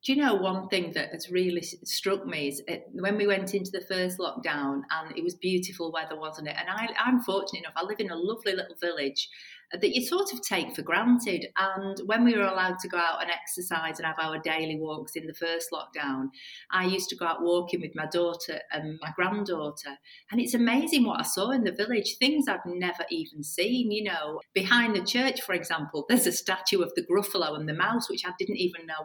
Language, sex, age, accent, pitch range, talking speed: English, female, 40-59, British, 165-220 Hz, 225 wpm